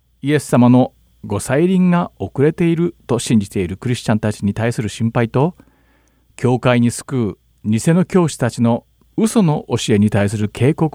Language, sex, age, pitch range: Japanese, male, 50-69, 95-140 Hz